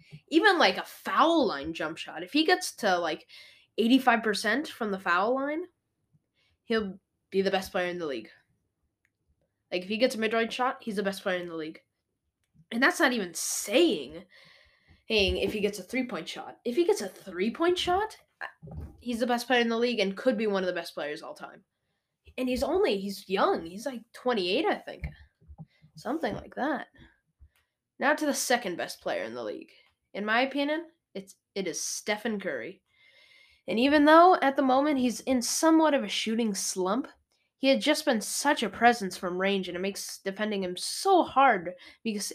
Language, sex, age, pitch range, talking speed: English, female, 10-29, 190-265 Hz, 190 wpm